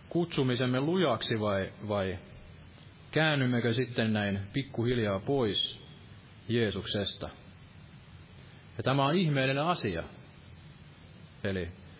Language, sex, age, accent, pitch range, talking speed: Finnish, male, 30-49, native, 105-135 Hz, 80 wpm